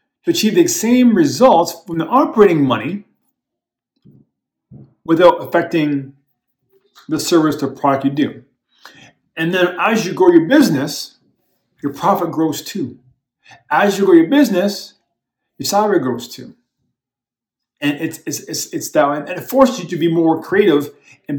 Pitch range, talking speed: 140-215 Hz, 145 wpm